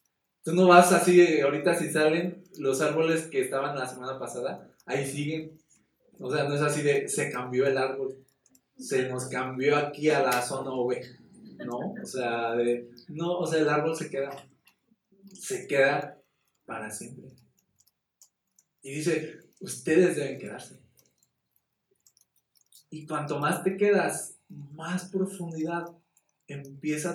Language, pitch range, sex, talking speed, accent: Spanish, 135-165 Hz, male, 140 wpm, Mexican